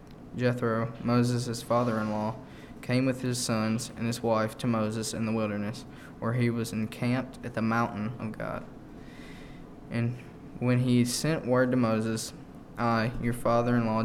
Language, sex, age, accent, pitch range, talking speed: English, male, 20-39, American, 110-125 Hz, 145 wpm